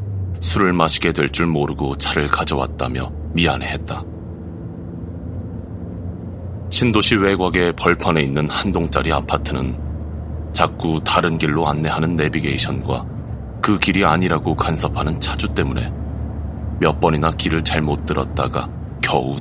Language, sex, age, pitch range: Korean, male, 30-49, 75-95 Hz